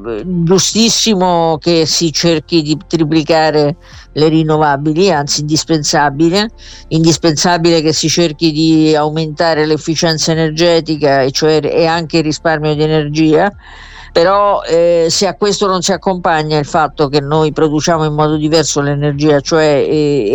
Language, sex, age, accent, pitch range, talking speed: Italian, female, 50-69, native, 150-170 Hz, 130 wpm